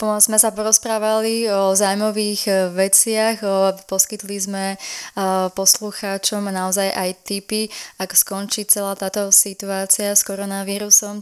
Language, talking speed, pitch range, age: Slovak, 100 wpm, 185-210 Hz, 20-39